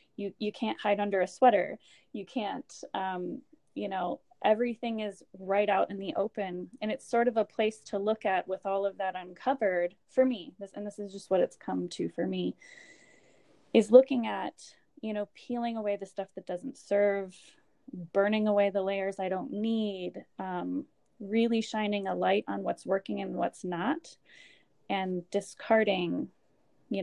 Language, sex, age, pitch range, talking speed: English, female, 20-39, 185-220 Hz, 175 wpm